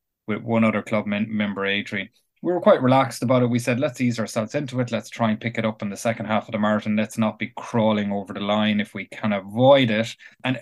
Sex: male